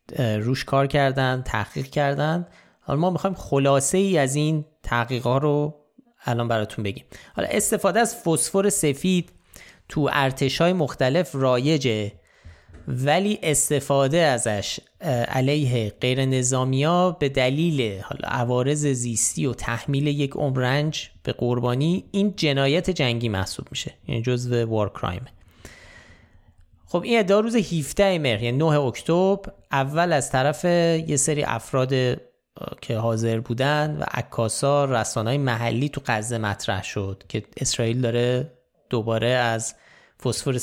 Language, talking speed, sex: Persian, 125 wpm, male